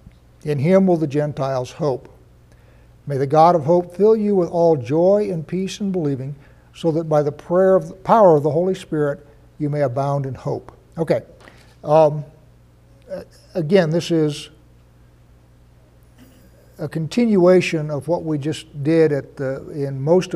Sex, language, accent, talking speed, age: male, English, American, 155 wpm, 60-79